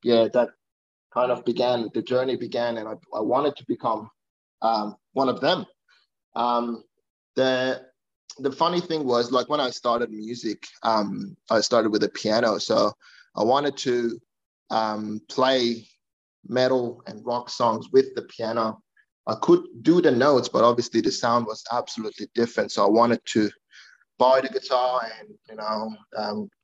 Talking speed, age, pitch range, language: 160 wpm, 20-39, 120-145 Hz, English